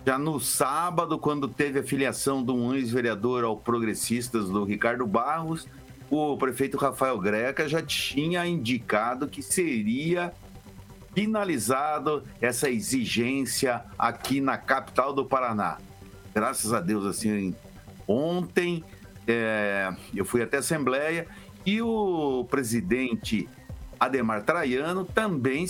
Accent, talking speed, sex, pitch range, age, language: Brazilian, 115 wpm, male, 120-170 Hz, 50-69, Portuguese